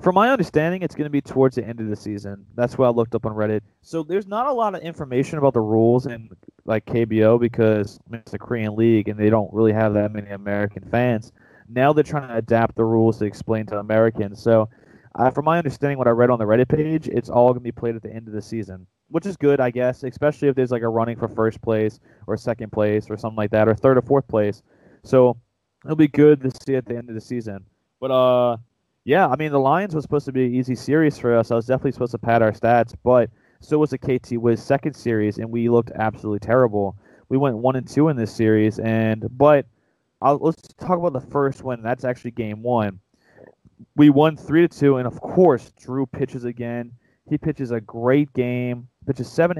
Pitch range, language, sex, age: 110-135 Hz, English, male, 20-39